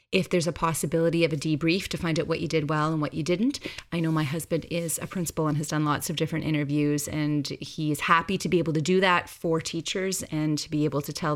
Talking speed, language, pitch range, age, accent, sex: 260 wpm, English, 150-190 Hz, 30-49, American, female